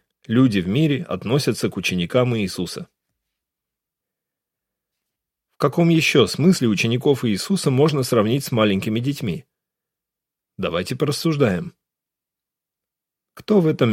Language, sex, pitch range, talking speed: Russian, male, 105-145 Hz, 100 wpm